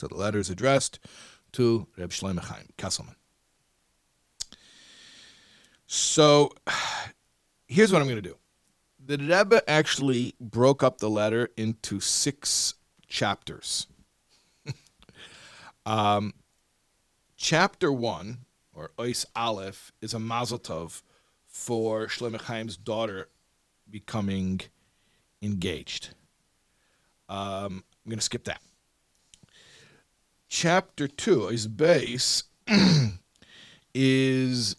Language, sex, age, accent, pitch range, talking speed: English, male, 40-59, American, 95-120 Hz, 90 wpm